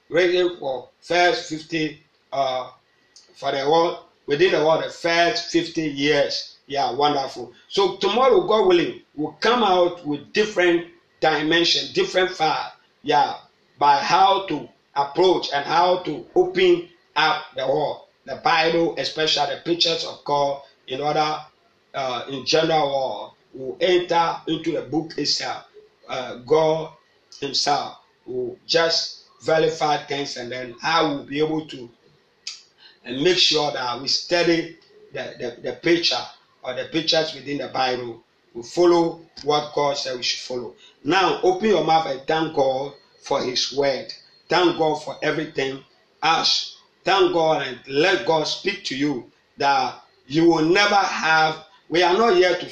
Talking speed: 150 wpm